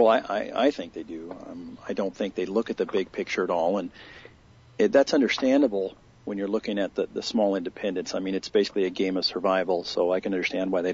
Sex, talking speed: male, 245 wpm